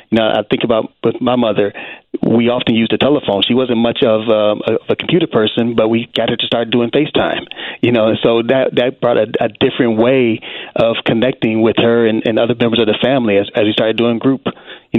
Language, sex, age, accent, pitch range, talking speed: English, male, 30-49, American, 105-115 Hz, 230 wpm